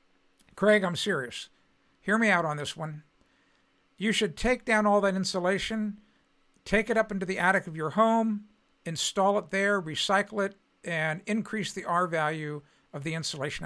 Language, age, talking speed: English, 60-79, 165 wpm